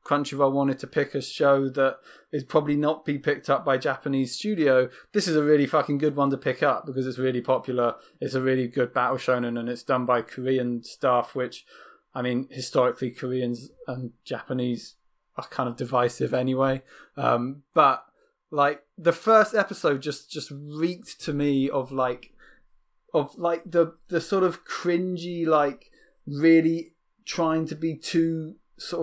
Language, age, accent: English, 20-39, British